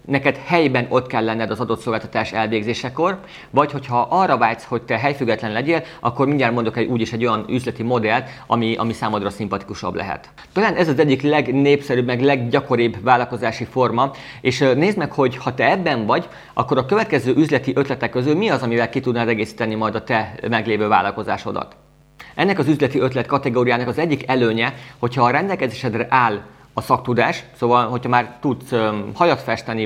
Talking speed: 170 wpm